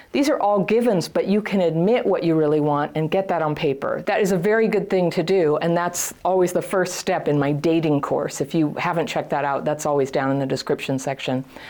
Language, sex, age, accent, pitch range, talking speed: English, female, 40-59, American, 155-205 Hz, 245 wpm